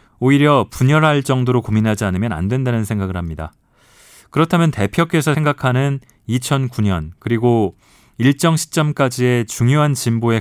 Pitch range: 100-135 Hz